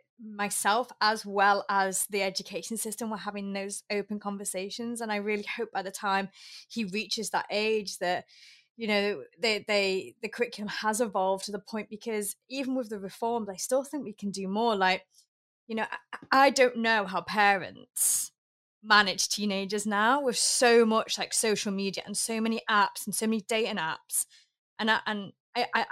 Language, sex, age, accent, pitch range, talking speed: English, female, 20-39, British, 195-225 Hz, 180 wpm